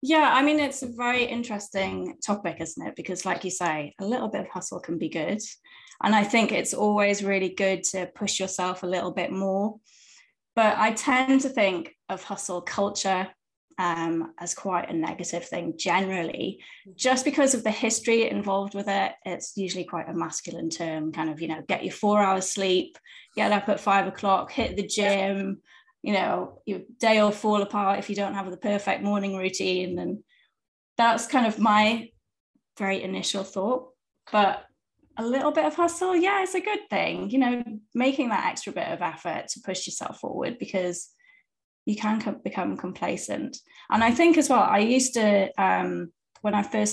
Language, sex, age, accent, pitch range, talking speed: English, female, 20-39, British, 185-235 Hz, 185 wpm